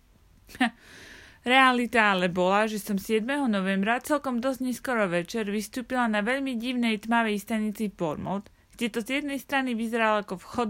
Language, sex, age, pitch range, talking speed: Slovak, female, 30-49, 190-235 Hz, 145 wpm